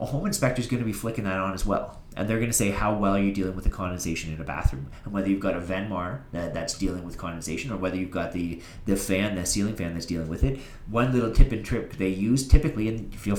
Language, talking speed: English, 270 wpm